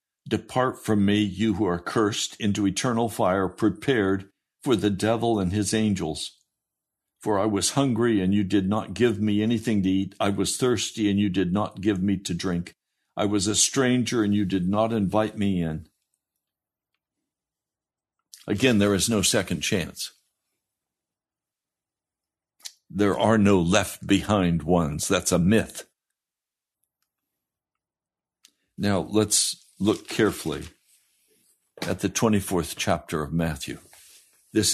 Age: 60-79